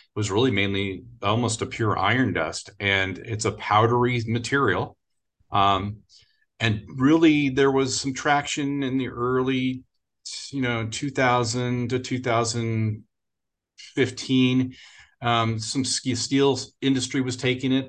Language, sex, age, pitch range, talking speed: English, male, 40-59, 100-125 Hz, 115 wpm